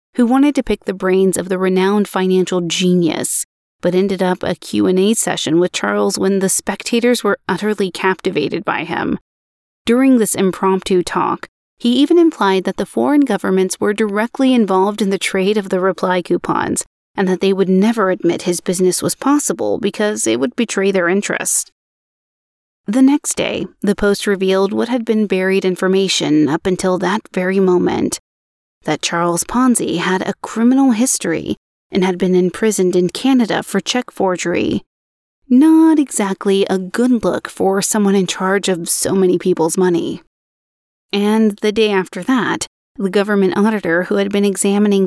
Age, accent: 30-49, American